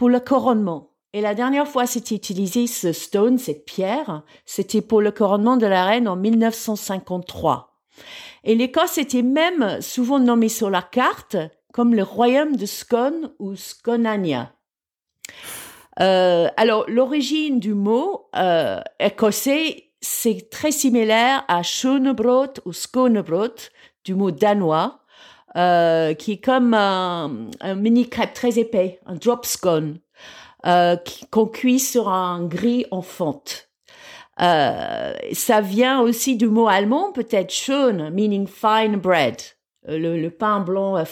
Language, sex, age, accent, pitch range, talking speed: French, female, 50-69, French, 185-250 Hz, 135 wpm